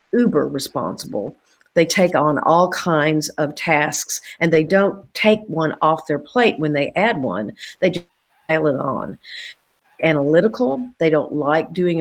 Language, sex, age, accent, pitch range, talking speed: English, female, 50-69, American, 150-190 Hz, 155 wpm